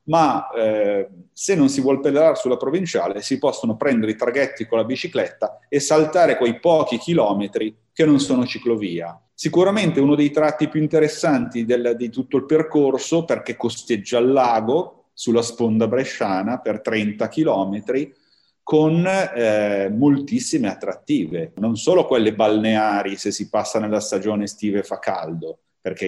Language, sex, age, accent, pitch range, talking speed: Italian, male, 40-59, native, 110-150 Hz, 145 wpm